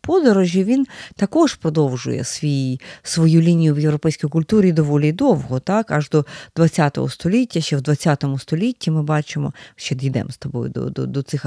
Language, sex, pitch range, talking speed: Ukrainian, female, 150-205 Hz, 160 wpm